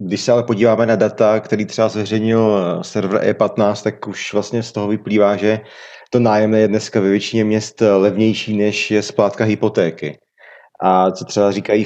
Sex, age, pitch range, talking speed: male, 30-49, 100-110 Hz, 170 wpm